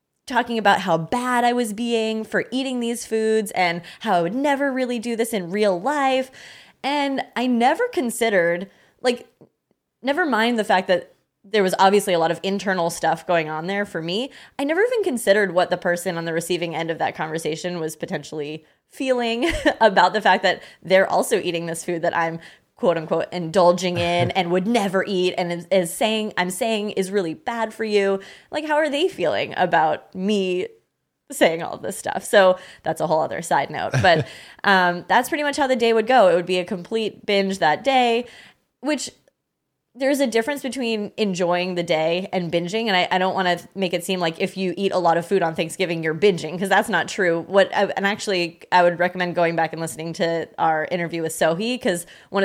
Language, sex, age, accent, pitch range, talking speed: English, female, 20-39, American, 175-230 Hz, 205 wpm